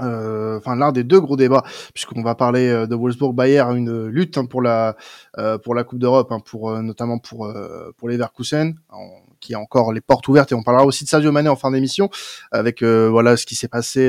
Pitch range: 120-155 Hz